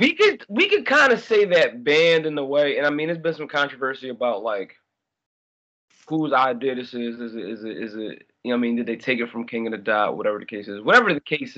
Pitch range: 120-150 Hz